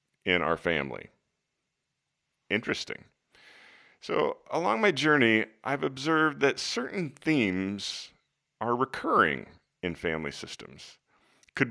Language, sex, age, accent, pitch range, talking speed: English, male, 40-59, American, 95-130 Hz, 95 wpm